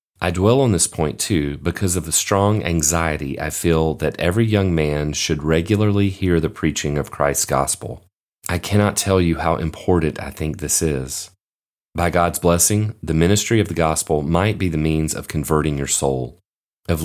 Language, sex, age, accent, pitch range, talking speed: English, male, 40-59, American, 75-95 Hz, 185 wpm